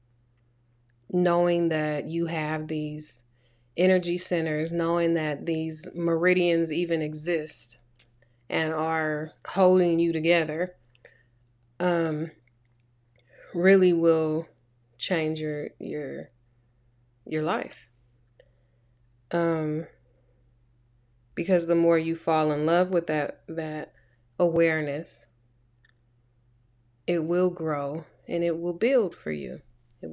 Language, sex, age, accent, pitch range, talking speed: English, female, 20-39, American, 120-170 Hz, 95 wpm